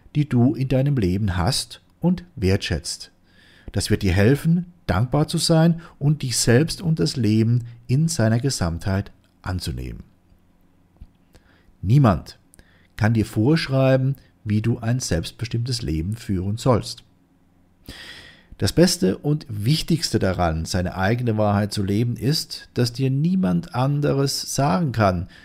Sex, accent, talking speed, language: male, German, 125 wpm, German